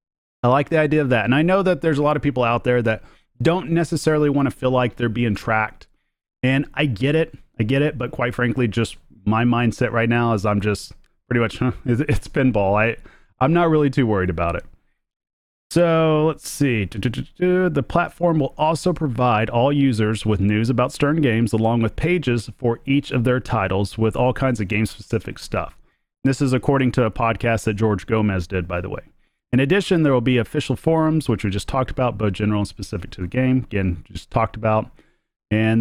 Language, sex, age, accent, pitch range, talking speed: English, male, 30-49, American, 110-140 Hz, 205 wpm